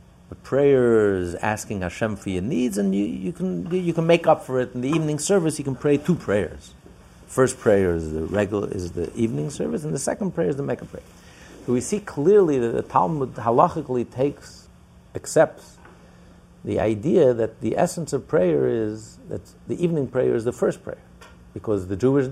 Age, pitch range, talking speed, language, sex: 60-79, 85-125 Hz, 195 wpm, English, male